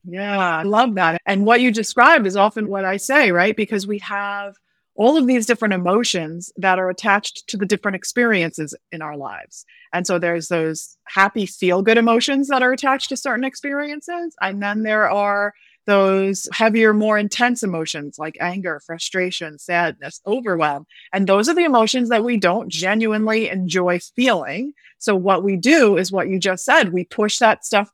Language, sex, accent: English, female, American